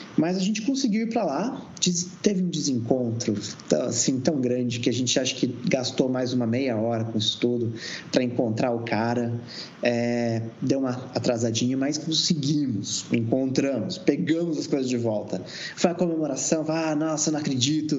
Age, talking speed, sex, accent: 20-39, 165 wpm, male, Brazilian